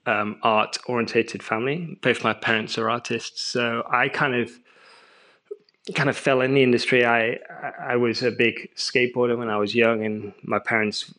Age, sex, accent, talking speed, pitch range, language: 20-39, male, British, 170 wpm, 115-140 Hz, English